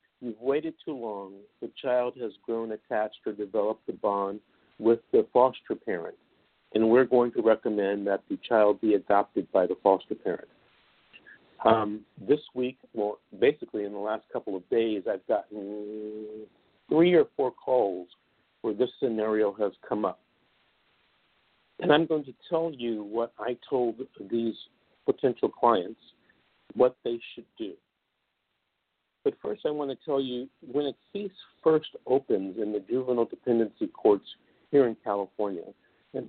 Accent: American